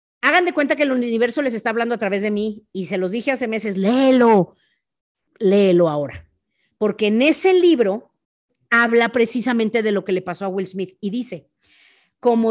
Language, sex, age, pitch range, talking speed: Spanish, female, 50-69, 215-285 Hz, 185 wpm